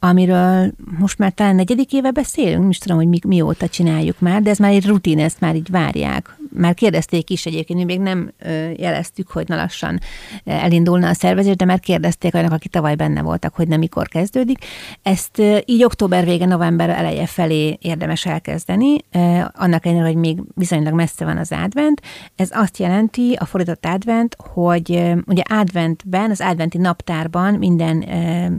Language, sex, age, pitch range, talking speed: Hungarian, female, 30-49, 165-195 Hz, 170 wpm